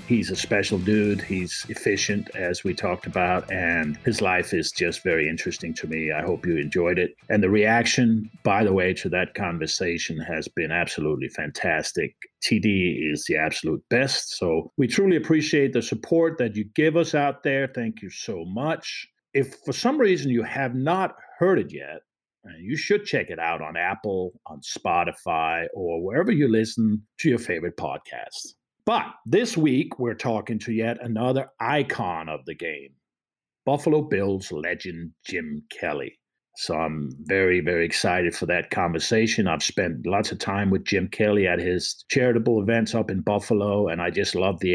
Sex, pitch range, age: male, 90-125 Hz, 50-69